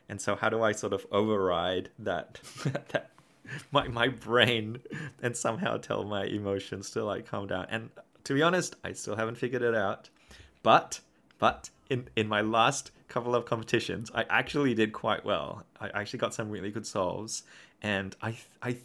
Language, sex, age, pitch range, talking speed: English, male, 20-39, 100-125 Hz, 180 wpm